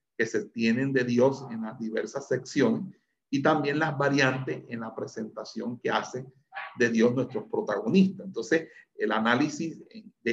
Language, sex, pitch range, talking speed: Spanish, male, 115-150 Hz, 150 wpm